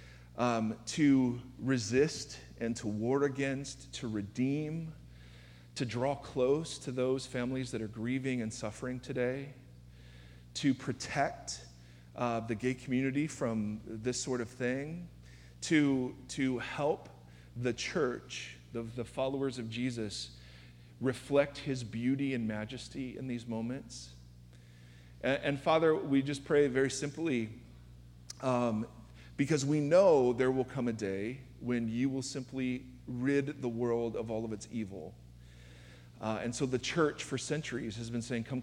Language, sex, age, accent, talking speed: English, male, 40-59, American, 140 wpm